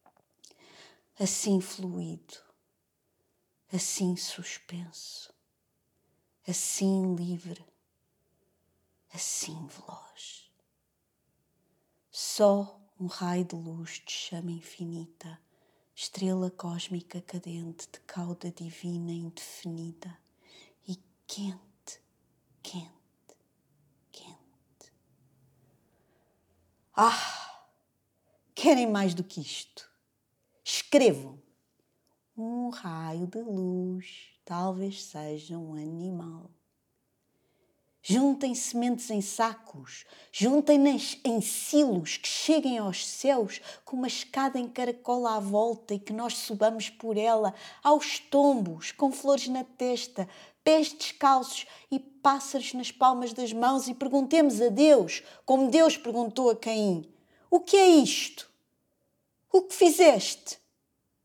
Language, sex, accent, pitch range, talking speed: English, female, Brazilian, 175-260 Hz, 95 wpm